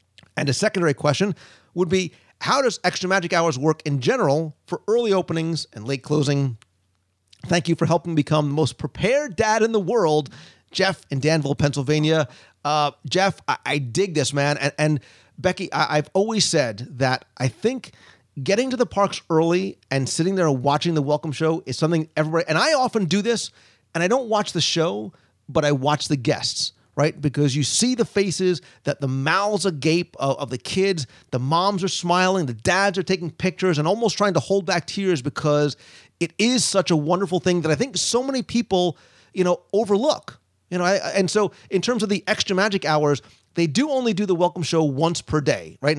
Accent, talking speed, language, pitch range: American, 205 wpm, English, 145-185 Hz